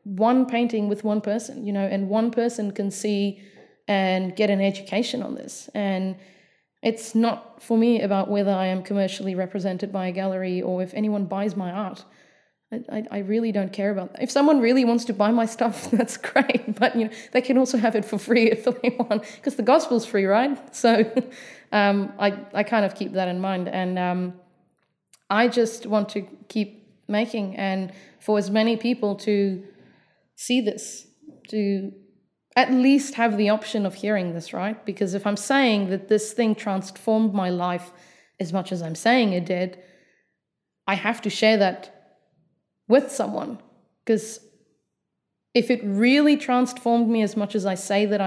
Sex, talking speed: female, 180 wpm